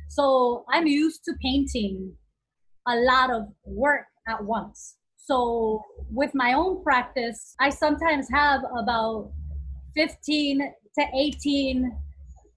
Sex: female